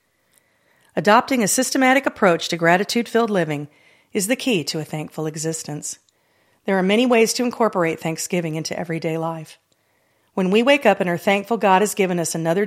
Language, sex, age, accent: English, female, 40-59, American